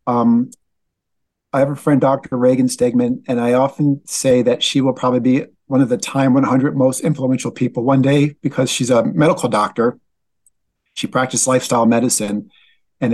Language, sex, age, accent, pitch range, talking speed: English, male, 50-69, American, 115-140 Hz, 170 wpm